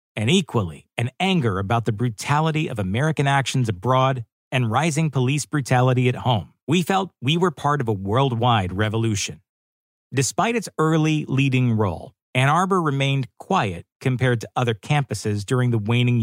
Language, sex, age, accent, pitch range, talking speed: English, male, 40-59, American, 115-150 Hz, 155 wpm